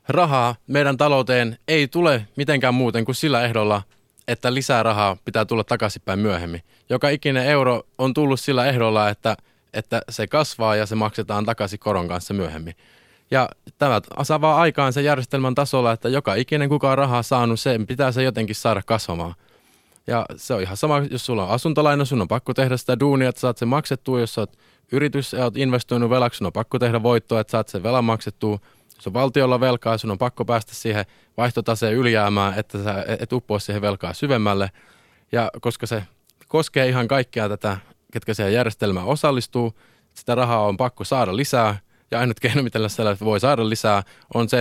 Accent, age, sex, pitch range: native, 20-39, male, 110-135 Hz